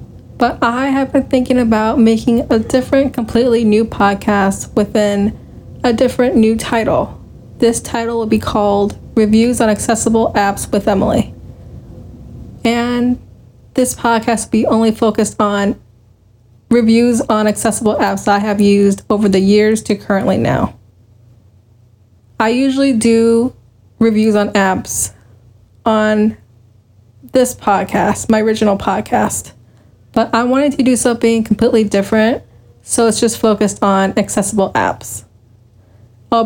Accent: American